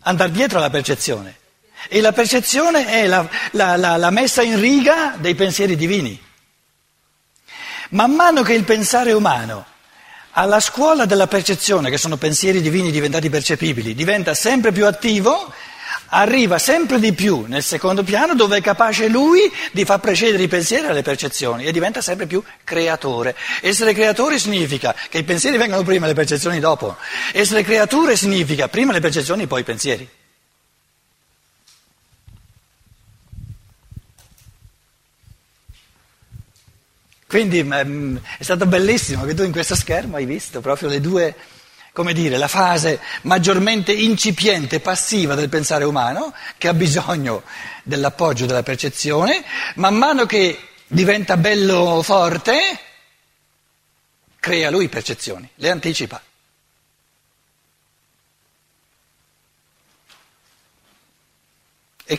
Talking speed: 120 wpm